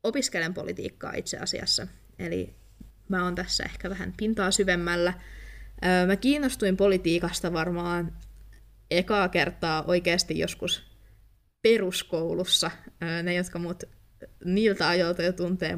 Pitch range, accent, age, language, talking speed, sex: 165-185 Hz, native, 20-39, Finnish, 105 wpm, female